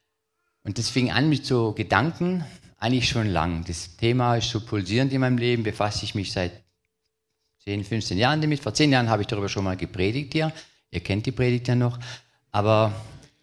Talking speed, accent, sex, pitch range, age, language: 190 wpm, German, male, 90-120 Hz, 40-59, German